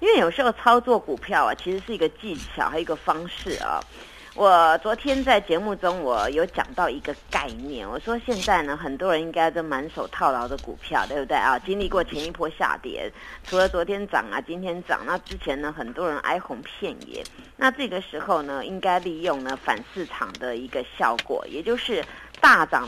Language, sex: Chinese, female